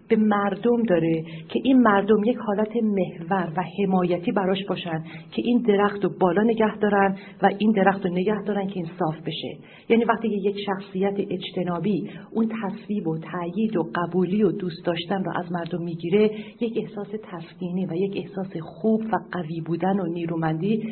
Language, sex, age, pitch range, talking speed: Persian, female, 50-69, 175-215 Hz, 170 wpm